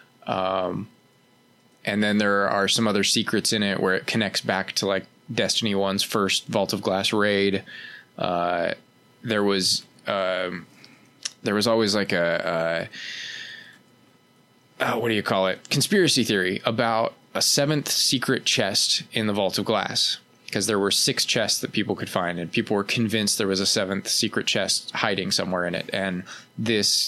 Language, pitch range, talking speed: English, 95-115 Hz, 170 wpm